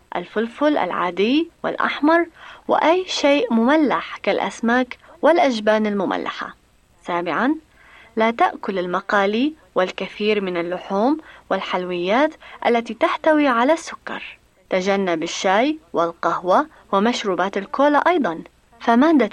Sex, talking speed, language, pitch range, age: female, 85 wpm, Arabic, 195-295 Hz, 30-49